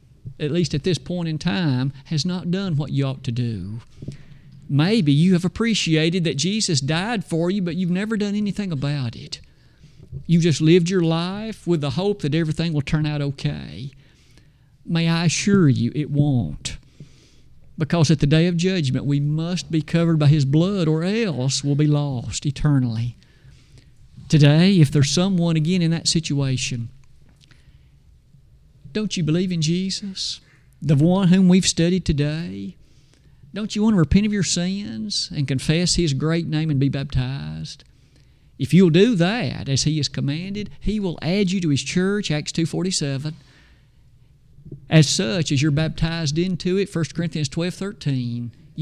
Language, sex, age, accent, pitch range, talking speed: English, male, 50-69, American, 140-180 Hz, 160 wpm